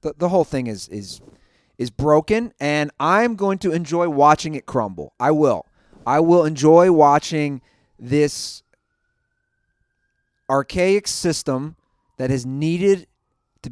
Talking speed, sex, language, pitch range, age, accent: 125 wpm, male, English, 140-220 Hz, 30-49, American